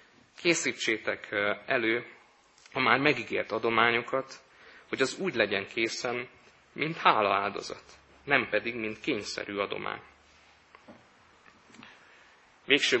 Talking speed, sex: 90 wpm, male